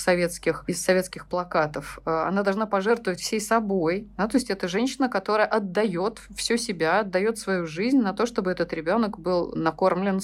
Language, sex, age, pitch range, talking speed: Russian, female, 20-39, 170-210 Hz, 165 wpm